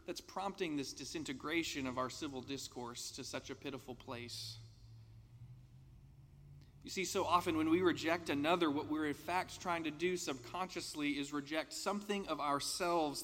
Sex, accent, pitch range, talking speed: male, American, 130-175 Hz, 155 wpm